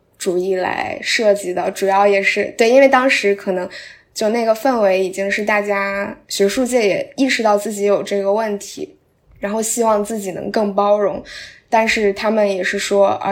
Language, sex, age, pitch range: Chinese, female, 10-29, 195-215 Hz